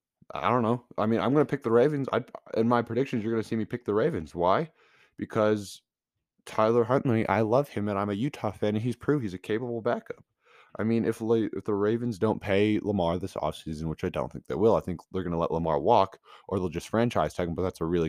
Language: English